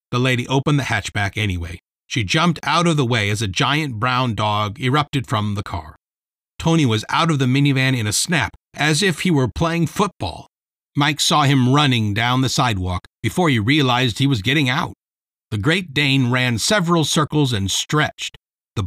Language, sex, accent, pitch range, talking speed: English, male, American, 105-150 Hz, 190 wpm